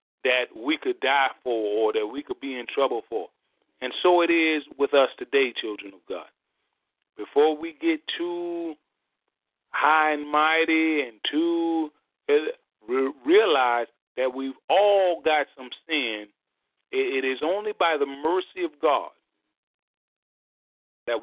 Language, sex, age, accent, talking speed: English, male, 40-59, American, 135 wpm